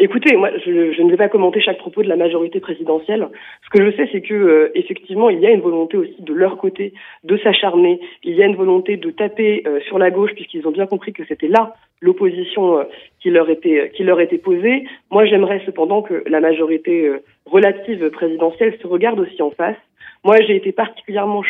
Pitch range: 175-270 Hz